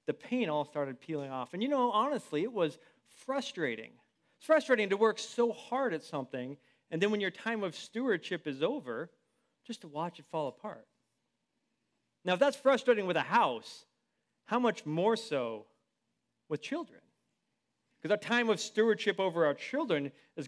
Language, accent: English, American